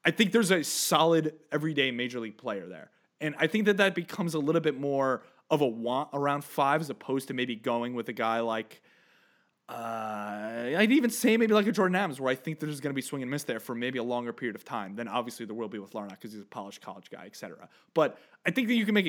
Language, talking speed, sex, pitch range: English, 260 wpm, male, 120-160 Hz